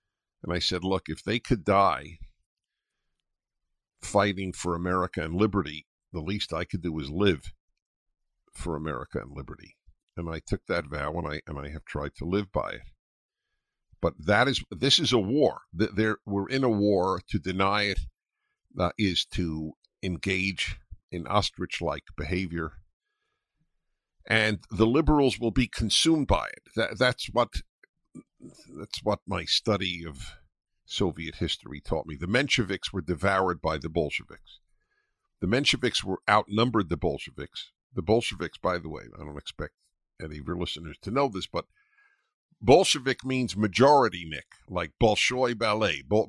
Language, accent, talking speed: English, American, 150 wpm